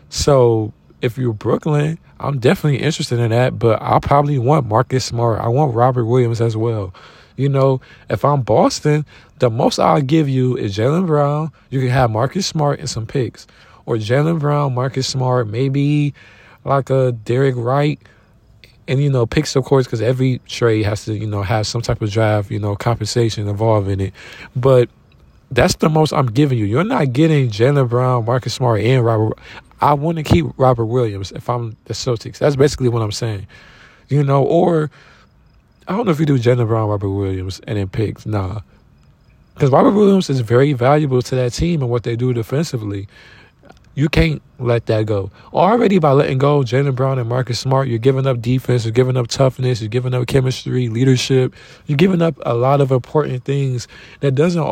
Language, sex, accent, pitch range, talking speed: English, male, American, 115-140 Hz, 190 wpm